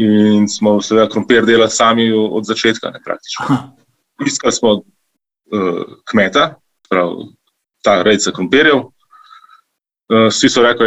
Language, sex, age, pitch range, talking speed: English, male, 20-39, 100-130 Hz, 120 wpm